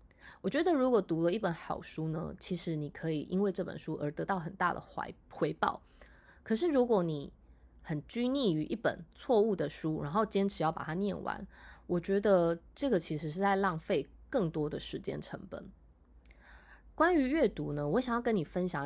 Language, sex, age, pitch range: Chinese, female, 20-39, 160-215 Hz